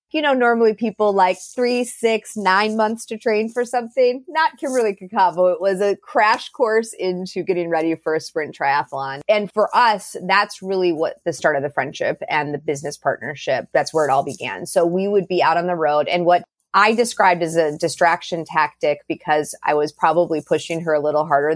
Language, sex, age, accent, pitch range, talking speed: English, female, 30-49, American, 155-195 Hz, 205 wpm